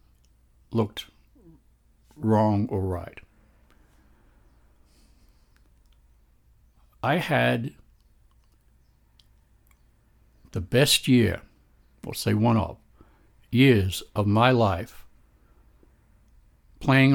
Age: 60-79